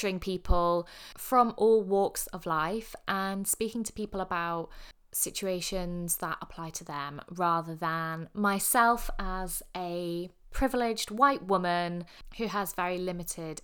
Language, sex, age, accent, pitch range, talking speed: English, female, 20-39, British, 170-205 Hz, 125 wpm